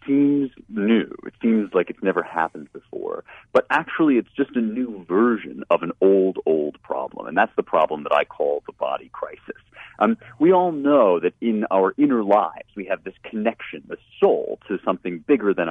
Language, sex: English, male